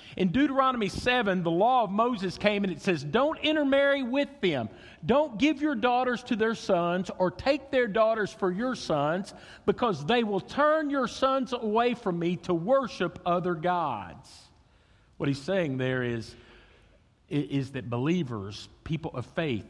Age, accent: 50-69, American